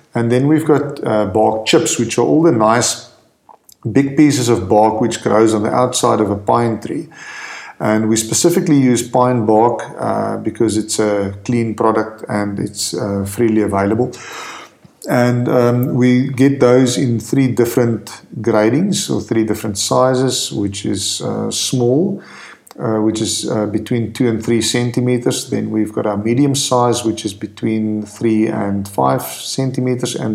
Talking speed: 160 wpm